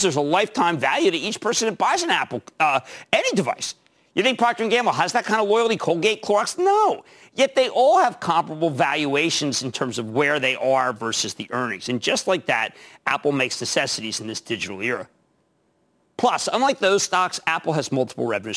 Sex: male